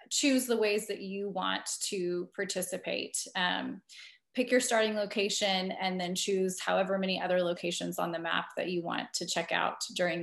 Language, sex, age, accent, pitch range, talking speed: English, female, 20-39, American, 190-235 Hz, 175 wpm